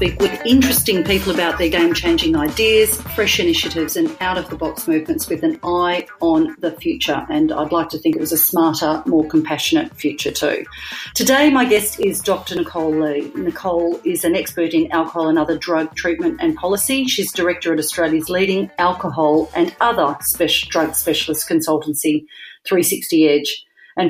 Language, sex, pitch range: English, female, 160-260 Hz